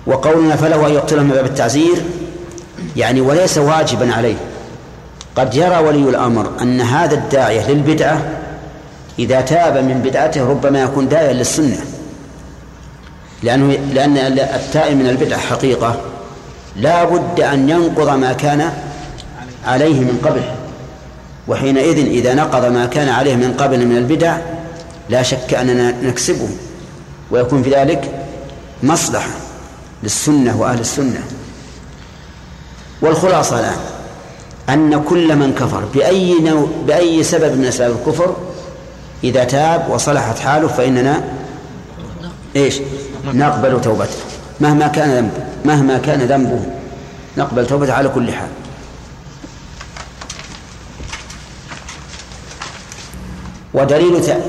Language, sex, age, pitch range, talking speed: Arabic, male, 40-59, 125-155 Hz, 100 wpm